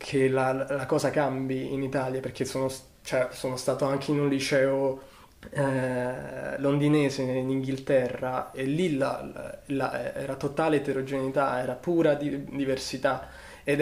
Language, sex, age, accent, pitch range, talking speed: Italian, male, 20-39, native, 130-145 Hz, 150 wpm